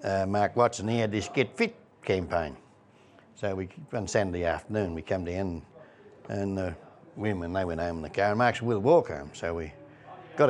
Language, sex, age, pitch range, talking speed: English, male, 60-79, 95-140 Hz, 205 wpm